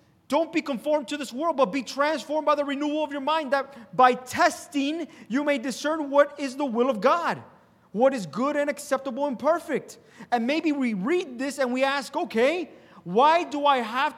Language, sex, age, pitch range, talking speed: English, male, 30-49, 225-285 Hz, 200 wpm